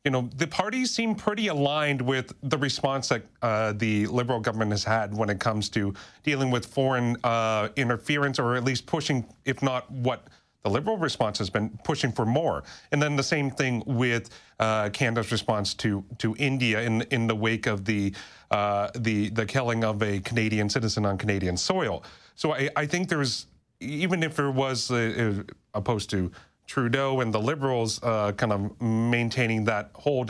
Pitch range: 105-135 Hz